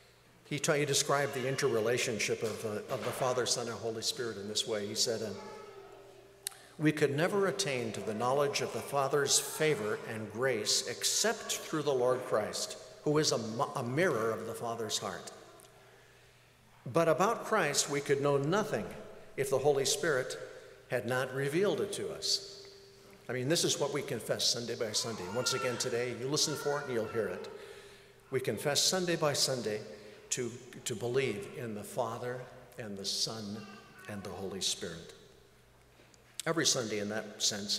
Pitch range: 120-190 Hz